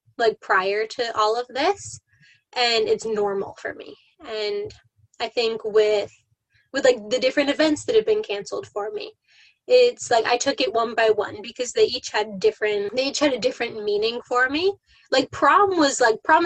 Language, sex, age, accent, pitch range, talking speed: English, female, 10-29, American, 210-275 Hz, 190 wpm